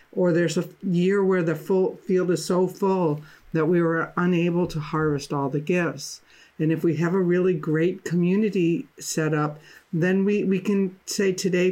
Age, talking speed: 60-79, 185 wpm